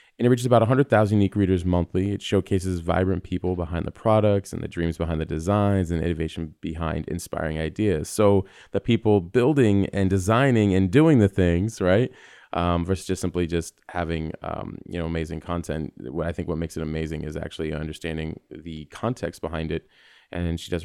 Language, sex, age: English, male, 20-39